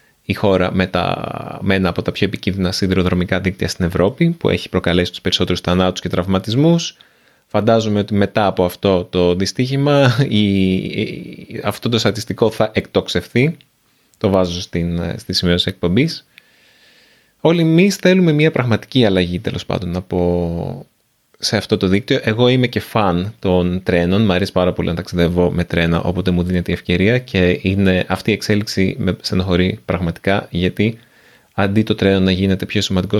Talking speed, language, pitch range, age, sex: 165 wpm, Greek, 90-110 Hz, 20-39, male